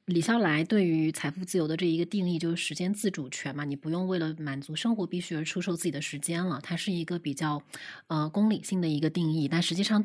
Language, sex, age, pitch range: Chinese, female, 20-39, 155-200 Hz